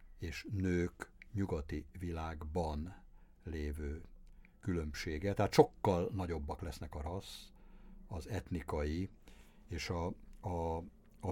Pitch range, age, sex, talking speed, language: 85-105 Hz, 60-79, male, 95 wpm, Hungarian